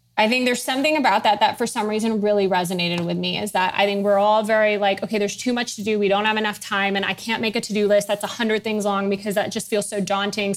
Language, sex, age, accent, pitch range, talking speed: English, female, 20-39, American, 185-215 Hz, 290 wpm